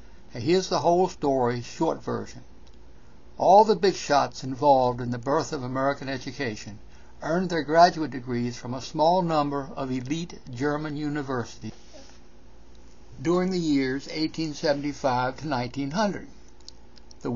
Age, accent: 60-79, American